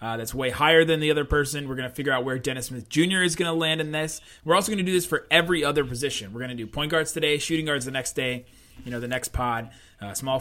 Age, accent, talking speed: 20-39, American, 300 wpm